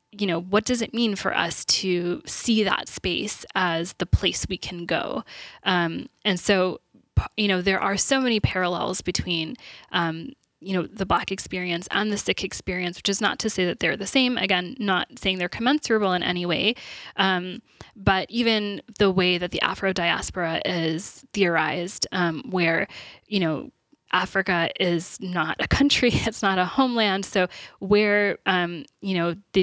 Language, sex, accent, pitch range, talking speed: English, female, American, 175-200 Hz, 175 wpm